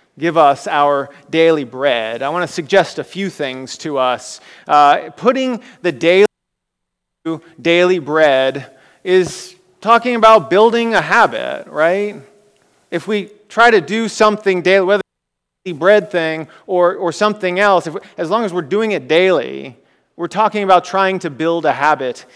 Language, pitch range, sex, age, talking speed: English, 155-195 Hz, male, 30-49, 170 wpm